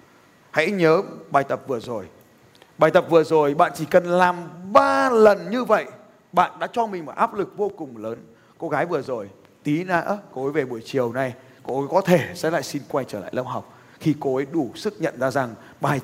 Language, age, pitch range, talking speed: Vietnamese, 30-49, 160-210 Hz, 230 wpm